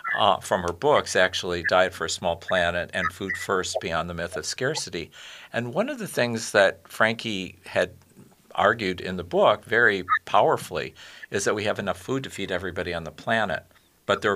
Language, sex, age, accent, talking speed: English, male, 50-69, American, 190 wpm